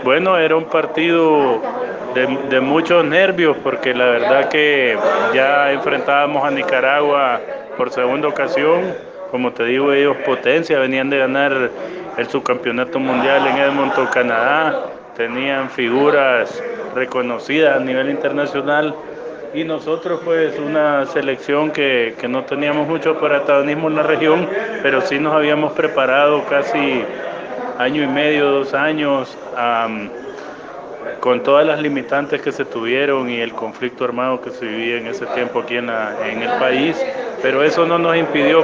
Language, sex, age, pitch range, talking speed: Spanish, male, 30-49, 130-160 Hz, 145 wpm